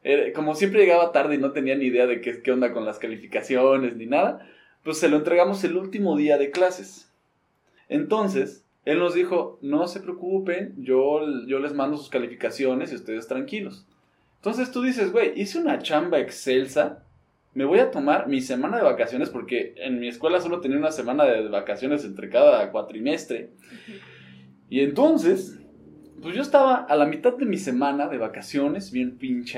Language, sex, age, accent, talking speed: Spanish, male, 20-39, Mexican, 175 wpm